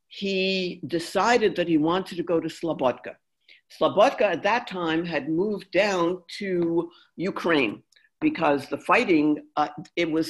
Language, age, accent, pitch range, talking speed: English, 60-79, American, 145-190 Hz, 140 wpm